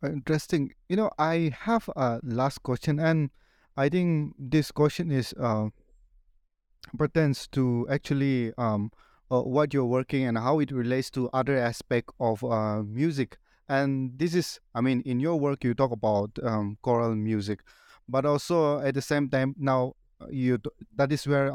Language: English